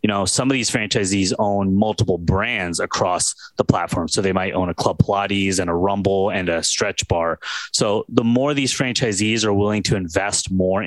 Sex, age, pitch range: male, 20-39, 95-120 Hz